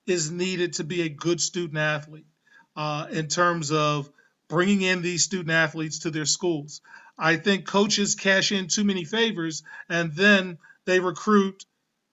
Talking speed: 160 wpm